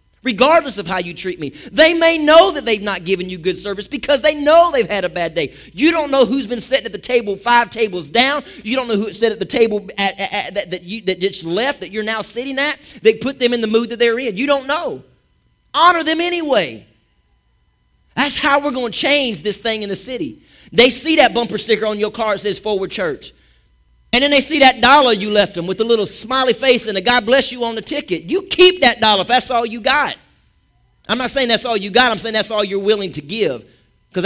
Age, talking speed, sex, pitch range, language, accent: 40-59, 250 wpm, male, 190-250 Hz, English, American